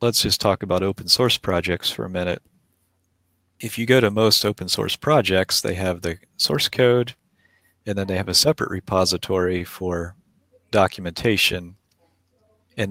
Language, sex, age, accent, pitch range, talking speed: English, male, 40-59, American, 90-100 Hz, 155 wpm